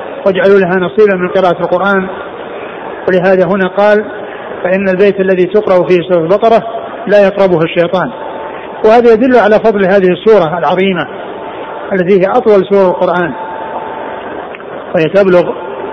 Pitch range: 180-210 Hz